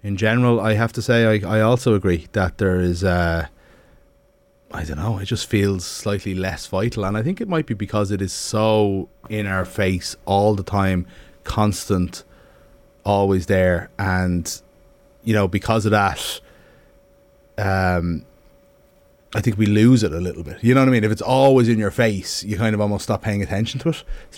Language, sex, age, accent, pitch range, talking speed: English, male, 30-49, Irish, 95-135 Hz, 190 wpm